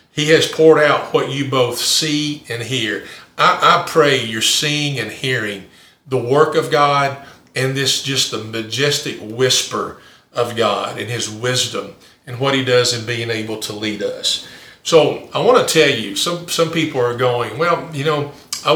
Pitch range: 125-155 Hz